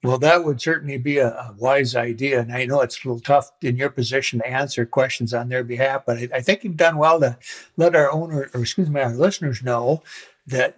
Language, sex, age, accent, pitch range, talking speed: English, male, 60-79, American, 125-145 Hz, 230 wpm